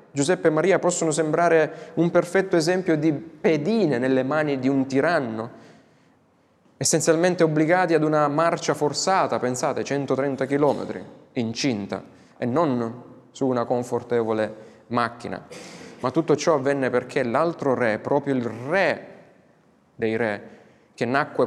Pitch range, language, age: 130-165 Hz, Italian, 20-39